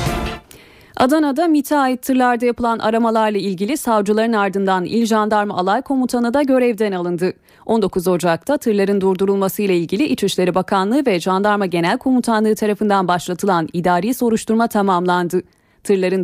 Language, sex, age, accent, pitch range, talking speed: Turkish, female, 30-49, native, 185-240 Hz, 125 wpm